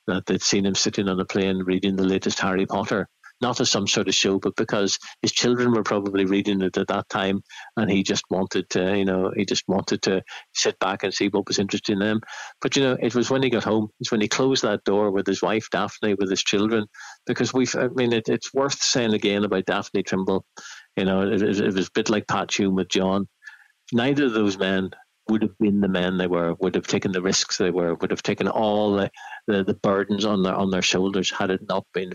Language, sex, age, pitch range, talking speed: English, male, 60-79, 95-105 Hz, 245 wpm